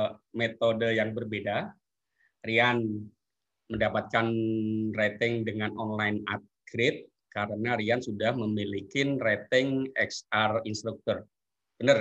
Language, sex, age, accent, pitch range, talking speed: Indonesian, male, 20-39, native, 105-135 Hz, 85 wpm